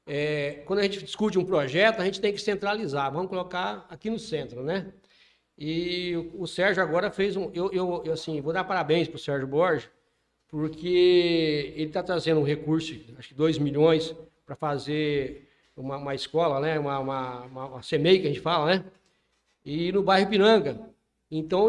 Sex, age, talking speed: male, 60-79, 185 wpm